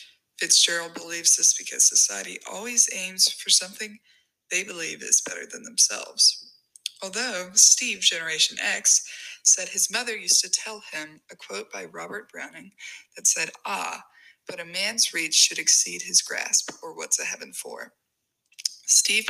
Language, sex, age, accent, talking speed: English, female, 20-39, American, 150 wpm